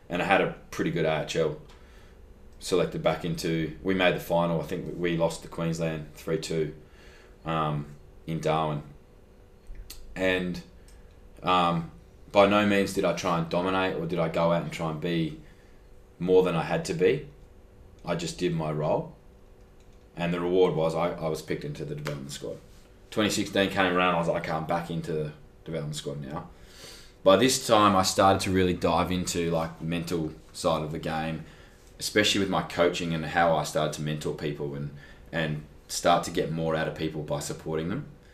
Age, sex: 20-39, male